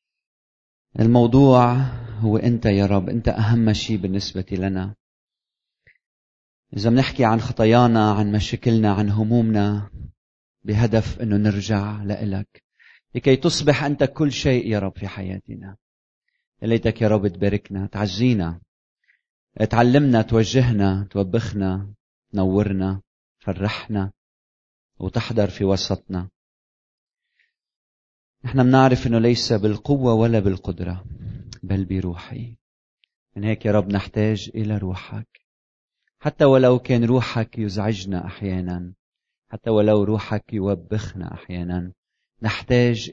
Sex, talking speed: male, 100 wpm